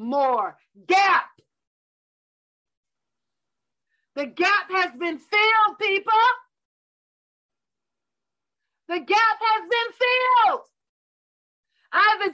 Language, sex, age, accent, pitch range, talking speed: English, female, 50-69, American, 295-420 Hz, 70 wpm